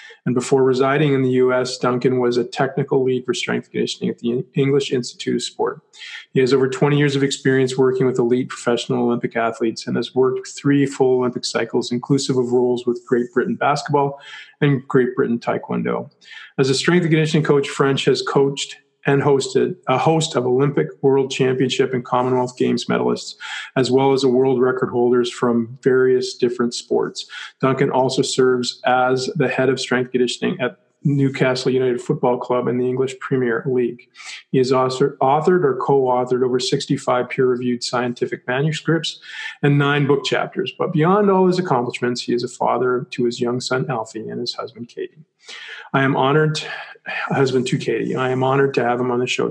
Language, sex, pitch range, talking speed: English, male, 125-140 Hz, 180 wpm